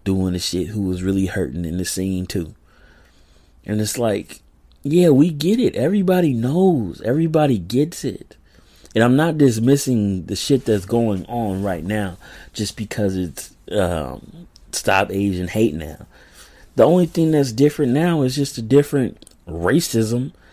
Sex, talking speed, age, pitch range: male, 155 wpm, 30-49, 95-140 Hz